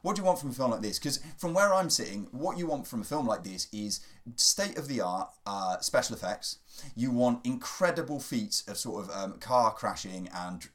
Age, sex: 30-49, male